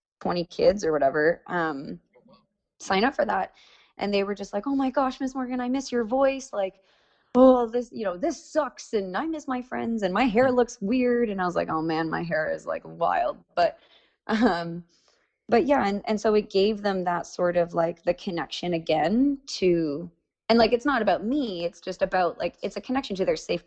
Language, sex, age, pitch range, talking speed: English, female, 20-39, 175-235 Hz, 215 wpm